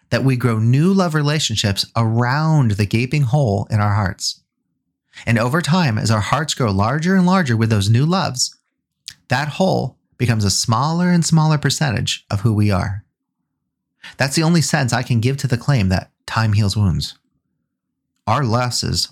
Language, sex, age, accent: English, male, 30-49, American